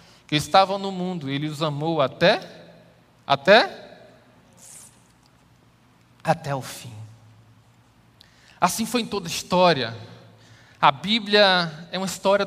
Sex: male